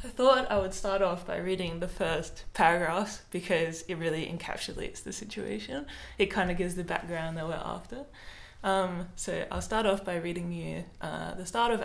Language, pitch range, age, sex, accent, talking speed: English, 175-215 Hz, 20-39, female, Australian, 190 wpm